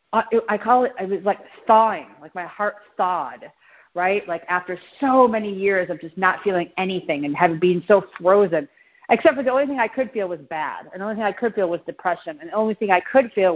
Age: 40-59